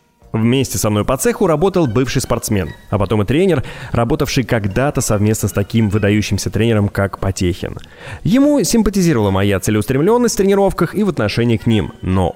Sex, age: male, 20-39